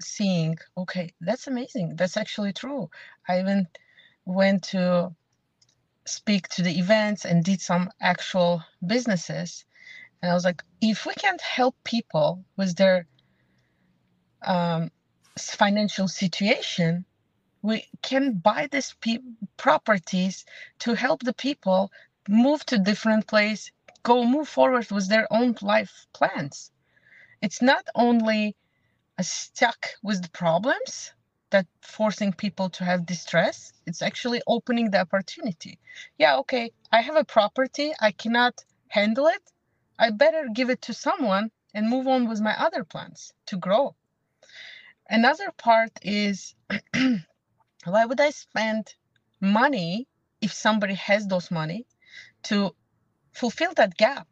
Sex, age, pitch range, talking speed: female, 30-49, 185-245 Hz, 125 wpm